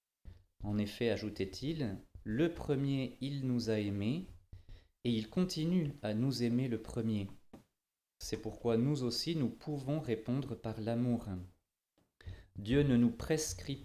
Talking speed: 130 wpm